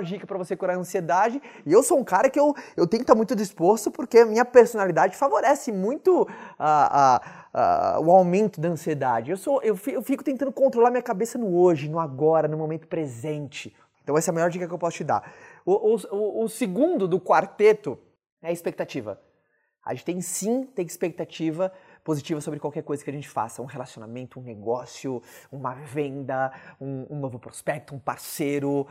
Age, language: 20-39, Portuguese